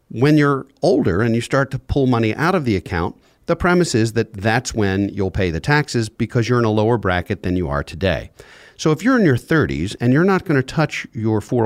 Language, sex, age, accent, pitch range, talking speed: English, male, 50-69, American, 100-130 Hz, 235 wpm